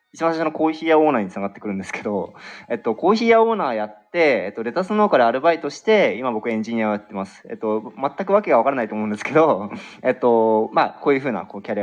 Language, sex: Japanese, male